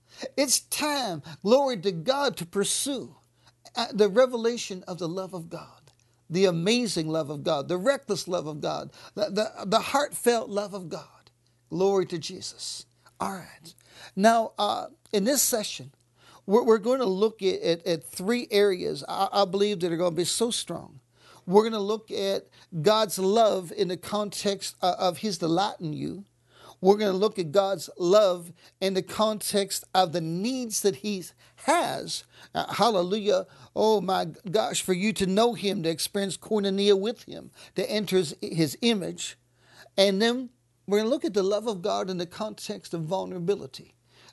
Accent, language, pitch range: American, English, 175-215 Hz